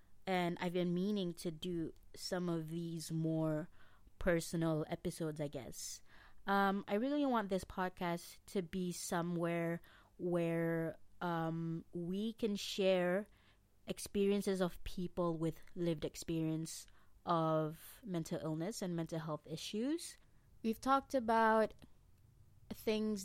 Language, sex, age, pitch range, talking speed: Malay, female, 20-39, 165-190 Hz, 115 wpm